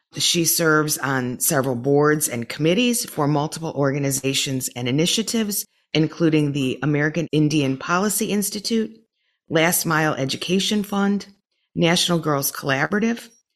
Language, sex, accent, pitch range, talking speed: English, female, American, 140-180 Hz, 110 wpm